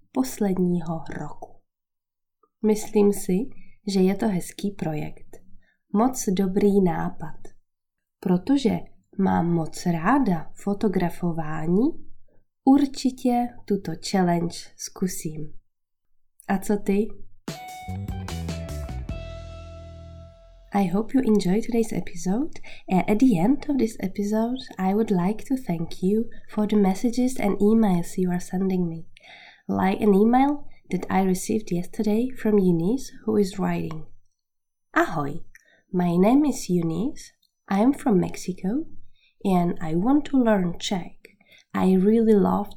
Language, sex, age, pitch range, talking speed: Czech, female, 20-39, 165-220 Hz, 115 wpm